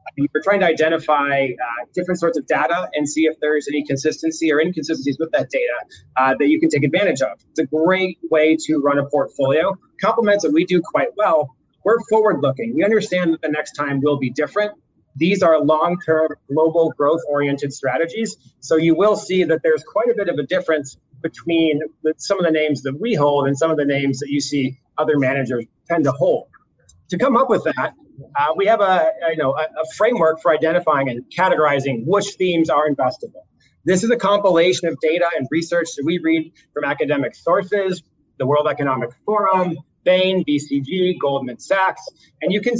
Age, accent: 30-49, American